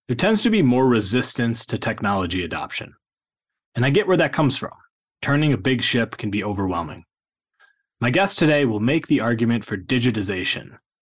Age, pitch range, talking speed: 20-39, 105-140 Hz, 175 wpm